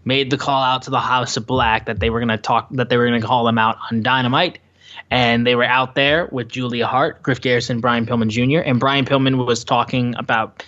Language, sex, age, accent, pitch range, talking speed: English, male, 20-39, American, 115-145 Hz, 240 wpm